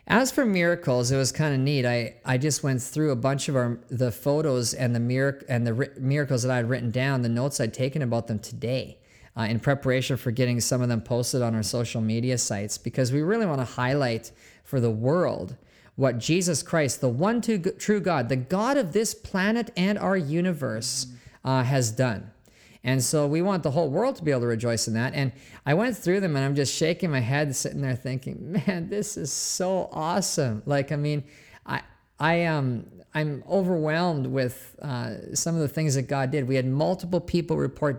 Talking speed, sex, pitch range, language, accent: 210 wpm, male, 125-155 Hz, English, American